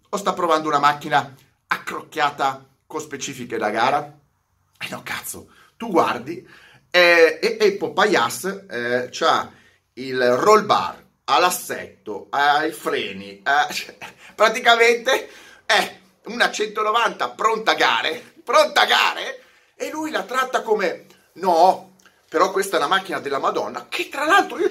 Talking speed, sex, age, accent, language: 130 wpm, male, 30-49, native, Italian